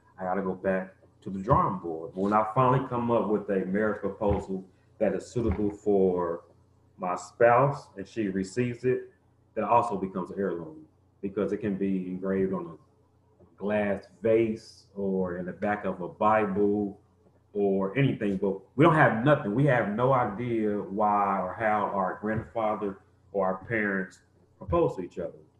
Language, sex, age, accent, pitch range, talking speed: English, male, 30-49, American, 95-110 Hz, 165 wpm